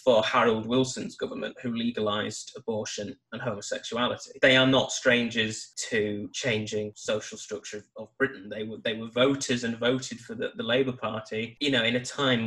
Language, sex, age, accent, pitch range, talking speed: English, male, 20-39, British, 110-130 Hz, 175 wpm